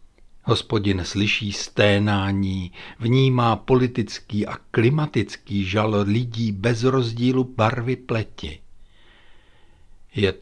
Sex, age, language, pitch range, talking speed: male, 60-79, Czech, 100-135 Hz, 80 wpm